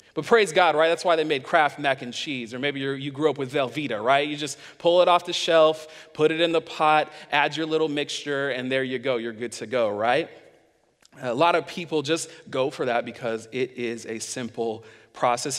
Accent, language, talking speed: American, English, 225 wpm